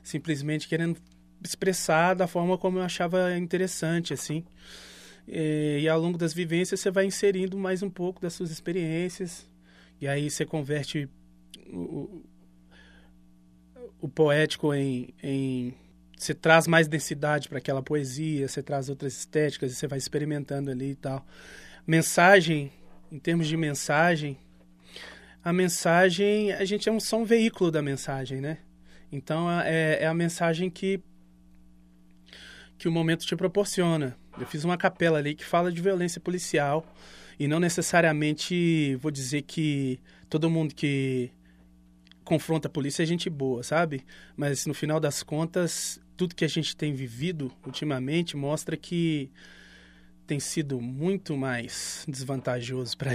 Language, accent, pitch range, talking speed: Portuguese, Brazilian, 135-175 Hz, 140 wpm